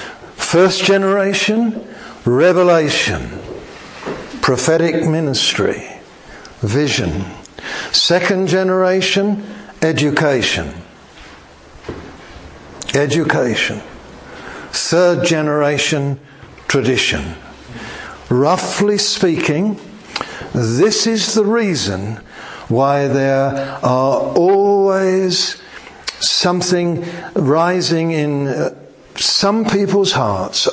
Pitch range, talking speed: 130-185 Hz, 60 wpm